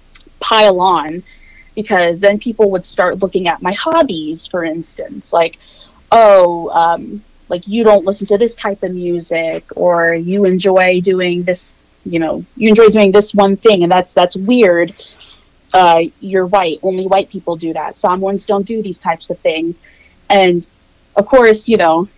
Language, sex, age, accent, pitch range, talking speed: English, female, 30-49, American, 170-205 Hz, 170 wpm